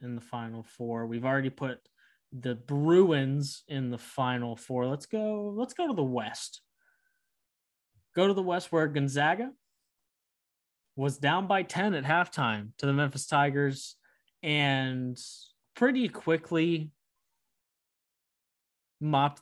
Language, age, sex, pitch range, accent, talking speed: English, 20-39, male, 125-155 Hz, American, 125 wpm